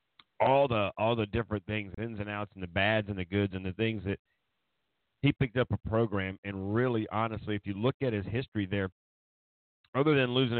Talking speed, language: 210 wpm, English